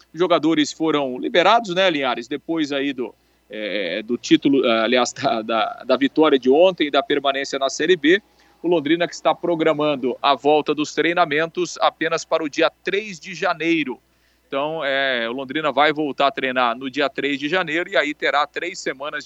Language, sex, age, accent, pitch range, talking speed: Portuguese, male, 40-59, Brazilian, 140-175 Hz, 170 wpm